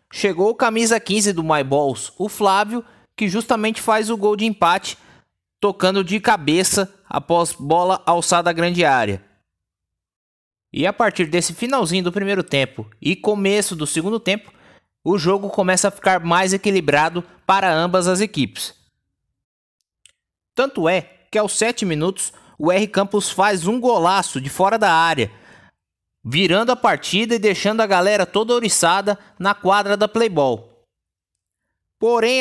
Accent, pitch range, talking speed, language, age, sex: Brazilian, 170-215 Hz, 145 wpm, Portuguese, 20-39, male